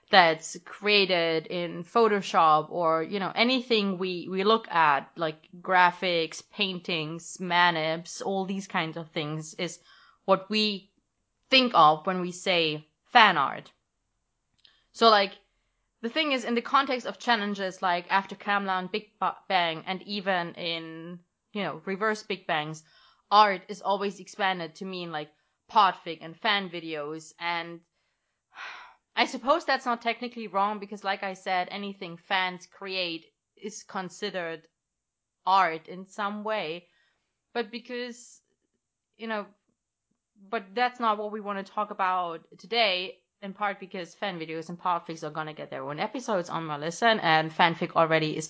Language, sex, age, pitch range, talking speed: English, female, 20-39, 170-210 Hz, 145 wpm